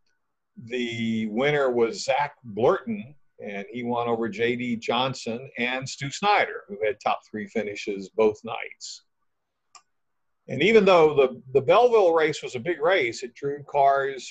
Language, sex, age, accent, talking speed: English, male, 50-69, American, 145 wpm